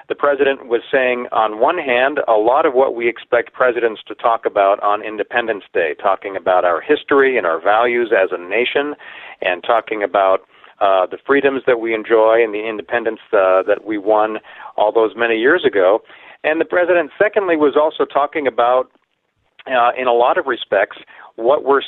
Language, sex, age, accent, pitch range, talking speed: English, male, 40-59, American, 105-145 Hz, 185 wpm